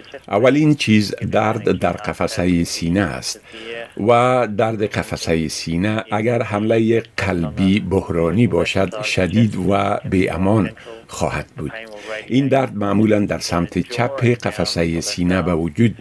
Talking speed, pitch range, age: 120 wpm, 90-115 Hz, 50-69